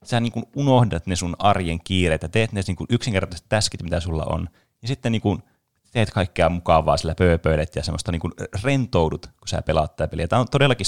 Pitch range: 85-110 Hz